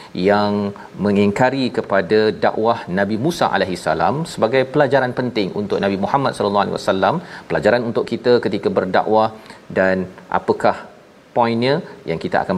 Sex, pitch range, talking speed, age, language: male, 105-140 Hz, 135 wpm, 40-59, Malayalam